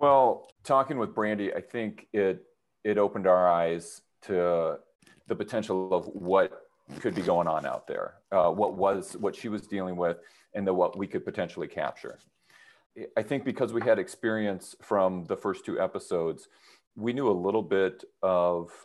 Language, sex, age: English, male, 40-59